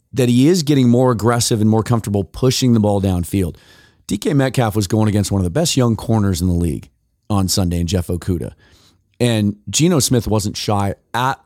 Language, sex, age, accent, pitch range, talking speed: English, male, 30-49, American, 95-120 Hz, 200 wpm